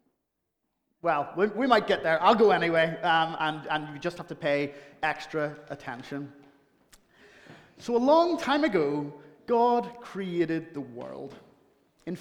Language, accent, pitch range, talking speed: English, British, 150-235 Hz, 140 wpm